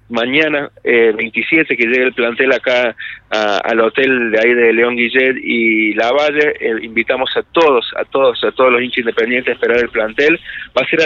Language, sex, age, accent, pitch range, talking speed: Spanish, male, 30-49, Argentinian, 115-150 Hz, 200 wpm